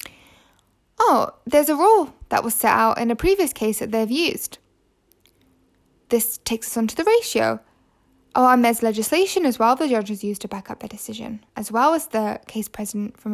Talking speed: 195 wpm